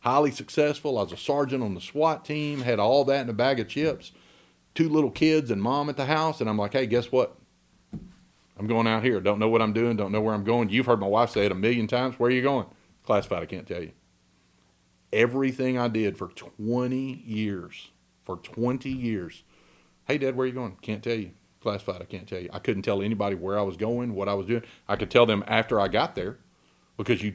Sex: male